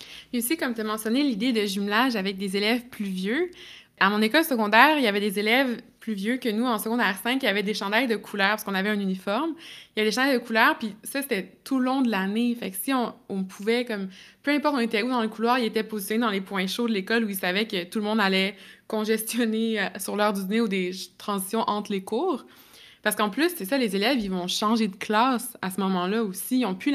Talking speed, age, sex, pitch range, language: 265 wpm, 20-39, female, 200-240 Hz, French